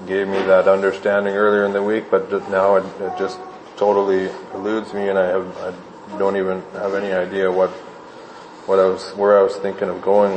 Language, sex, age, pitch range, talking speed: English, male, 20-39, 95-105 Hz, 210 wpm